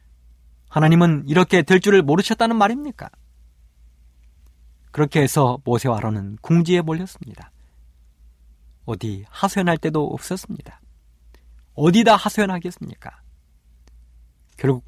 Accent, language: native, Korean